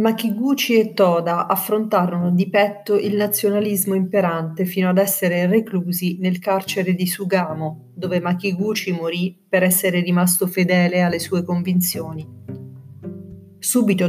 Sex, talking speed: female, 120 wpm